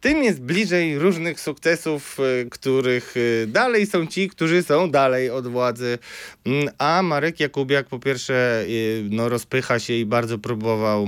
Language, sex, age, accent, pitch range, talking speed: Polish, male, 20-39, native, 105-160 Hz, 130 wpm